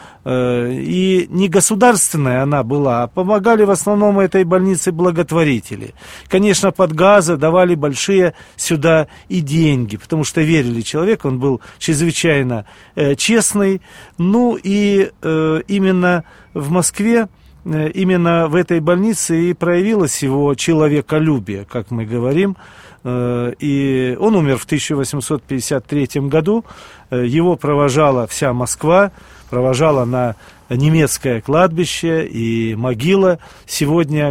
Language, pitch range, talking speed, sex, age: Russian, 130-175 Hz, 105 wpm, male, 40-59